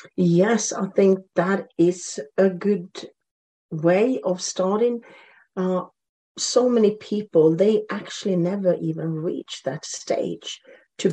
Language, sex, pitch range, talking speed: English, female, 165-200 Hz, 120 wpm